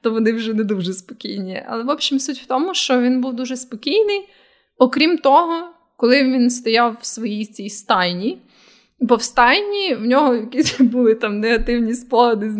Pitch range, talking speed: 220-270 Hz, 175 wpm